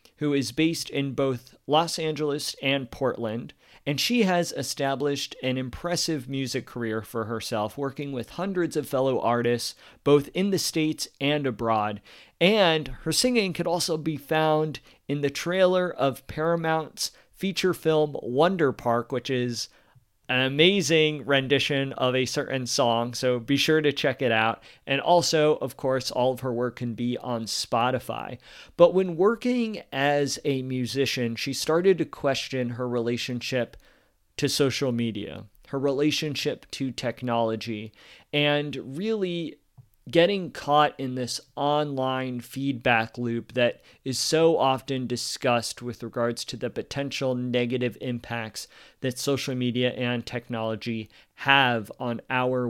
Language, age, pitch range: English, 40-59, 120-150 Hz